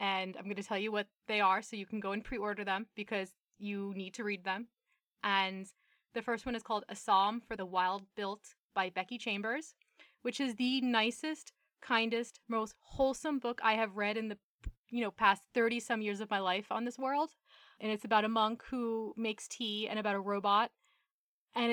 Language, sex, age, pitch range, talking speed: English, female, 20-39, 205-240 Hz, 205 wpm